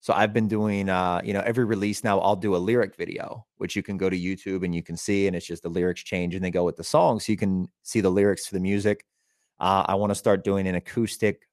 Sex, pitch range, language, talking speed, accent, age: male, 90-105 Hz, English, 280 wpm, American, 30-49